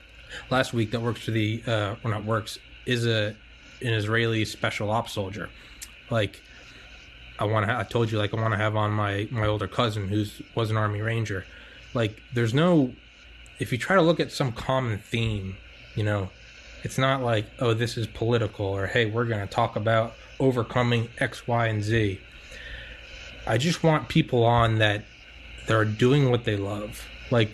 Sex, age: male, 20-39